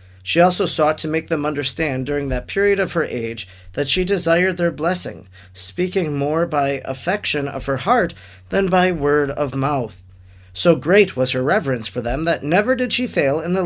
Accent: American